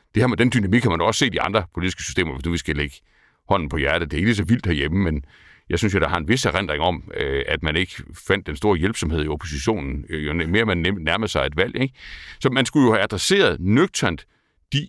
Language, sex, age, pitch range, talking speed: Danish, male, 60-79, 80-110 Hz, 255 wpm